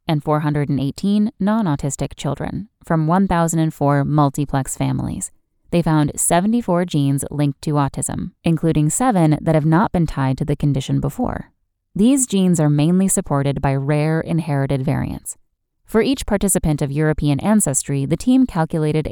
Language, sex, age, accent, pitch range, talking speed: English, female, 10-29, American, 140-175 Hz, 140 wpm